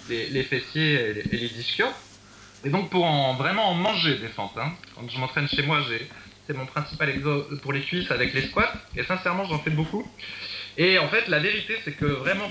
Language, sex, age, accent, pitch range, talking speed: French, male, 20-39, French, 145-205 Hz, 210 wpm